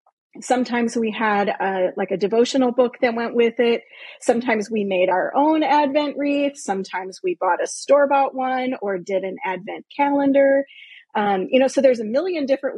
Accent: American